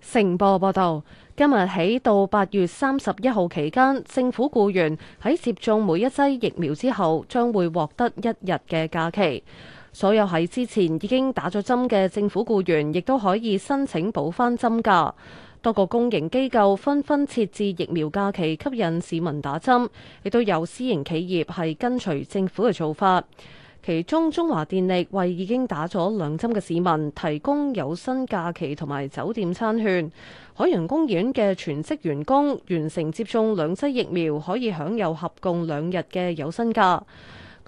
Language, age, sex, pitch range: Chinese, 20-39, female, 170-235 Hz